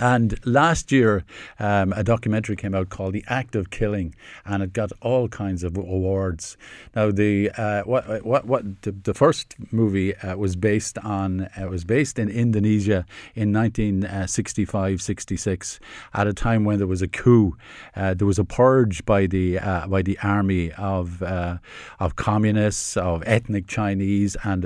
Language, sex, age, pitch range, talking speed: English, male, 50-69, 95-115 Hz, 165 wpm